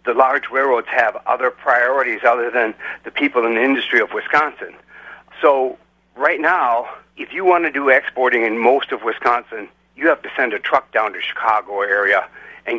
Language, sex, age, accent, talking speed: English, male, 60-79, American, 190 wpm